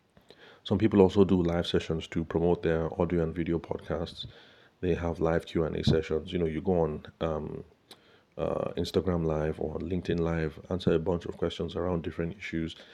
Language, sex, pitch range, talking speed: English, male, 80-90 Hz, 185 wpm